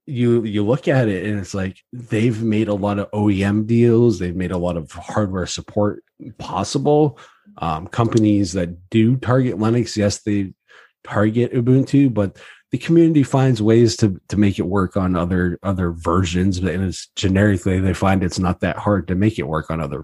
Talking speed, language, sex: 185 wpm, English, male